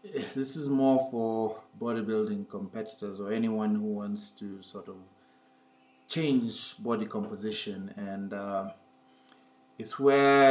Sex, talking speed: male, 115 wpm